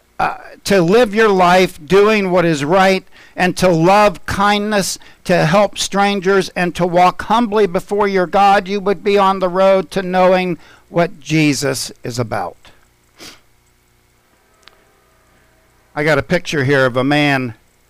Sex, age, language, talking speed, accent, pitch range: male, 50-69, English, 145 wpm, American, 125-190 Hz